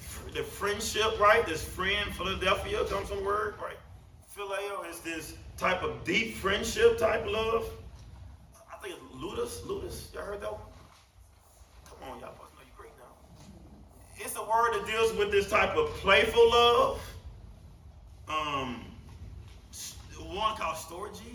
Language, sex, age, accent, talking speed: English, male, 30-49, American, 140 wpm